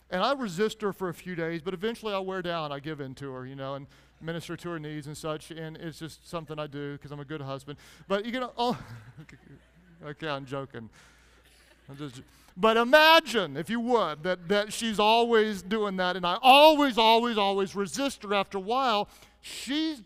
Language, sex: English, male